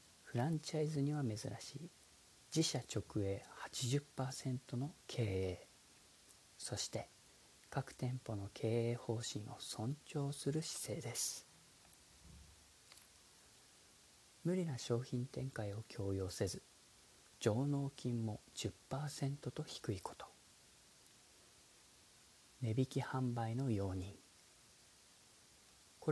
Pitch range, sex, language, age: 100-135 Hz, male, Japanese, 40-59